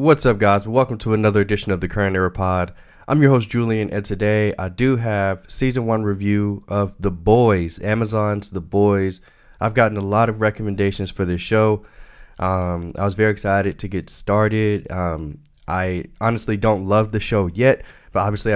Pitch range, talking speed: 95-110 Hz, 185 wpm